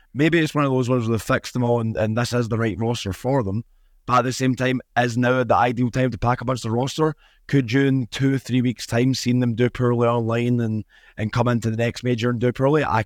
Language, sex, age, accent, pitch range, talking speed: English, male, 20-39, British, 105-125 Hz, 280 wpm